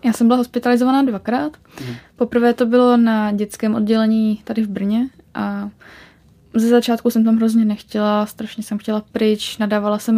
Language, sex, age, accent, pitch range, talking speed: Czech, female, 20-39, native, 210-235 Hz, 160 wpm